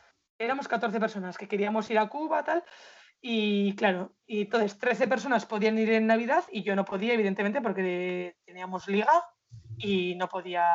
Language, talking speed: English, 175 wpm